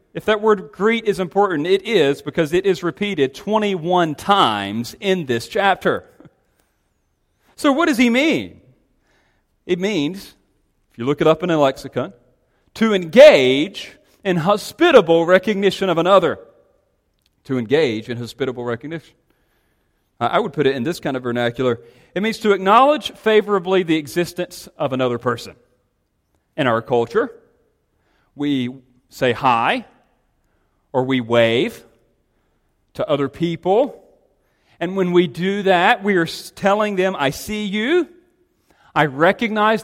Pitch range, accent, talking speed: 130-205 Hz, American, 135 wpm